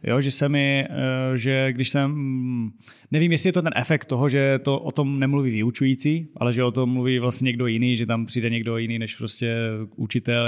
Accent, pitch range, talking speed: native, 115-135 Hz, 205 wpm